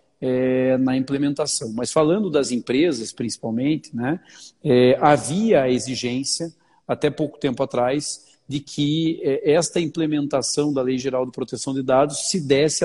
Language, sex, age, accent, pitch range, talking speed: Portuguese, male, 40-59, Brazilian, 130-150 Hz, 145 wpm